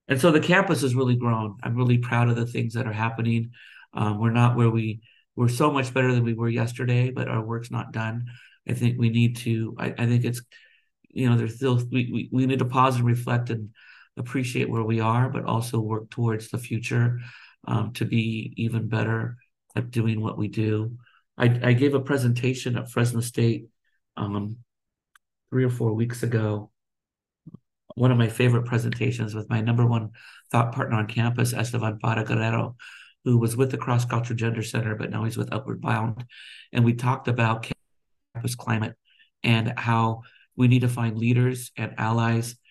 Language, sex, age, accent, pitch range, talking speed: English, male, 50-69, American, 115-125 Hz, 185 wpm